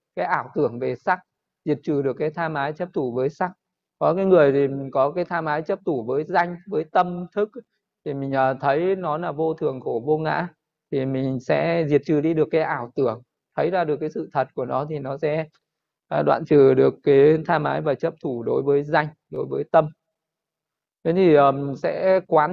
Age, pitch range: 20-39, 145-175 Hz